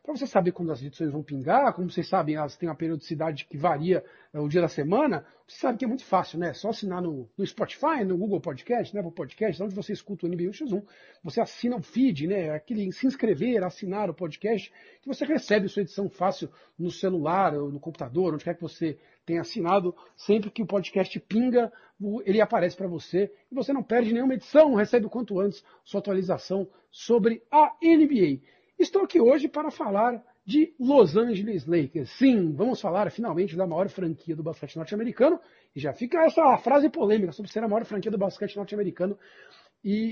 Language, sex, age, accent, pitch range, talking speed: Portuguese, male, 50-69, Brazilian, 175-230 Hz, 200 wpm